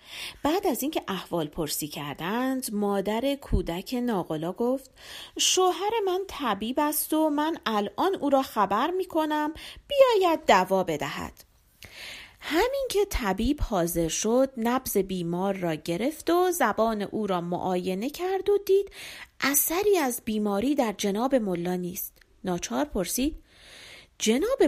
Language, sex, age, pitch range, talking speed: Persian, female, 40-59, 210-345 Hz, 130 wpm